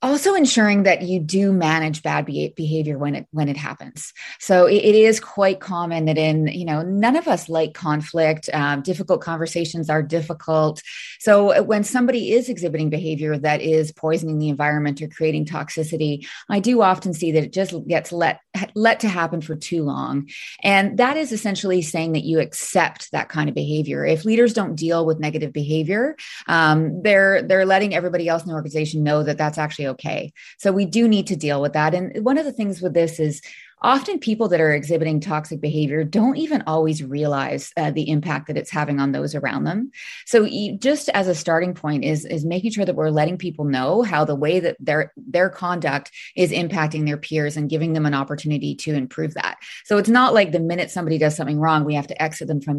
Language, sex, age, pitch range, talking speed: English, female, 30-49, 150-195 Hz, 205 wpm